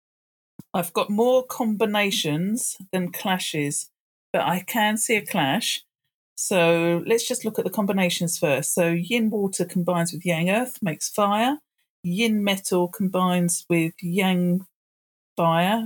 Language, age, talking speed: English, 40-59, 130 wpm